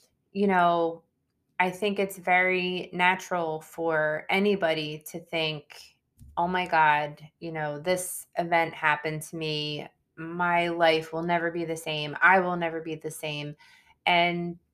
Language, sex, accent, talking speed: English, female, American, 145 wpm